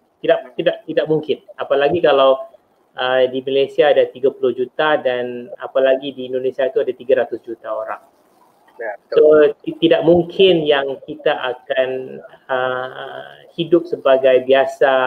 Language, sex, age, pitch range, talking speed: Malay, male, 30-49, 130-175 Hz, 130 wpm